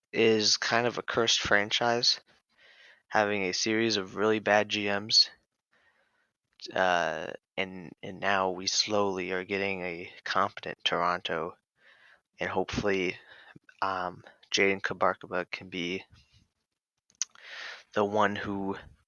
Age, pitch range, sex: 20-39, 95-125 Hz, male